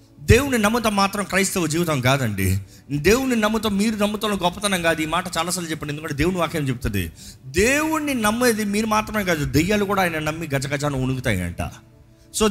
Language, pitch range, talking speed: Telugu, 140-220 Hz, 160 wpm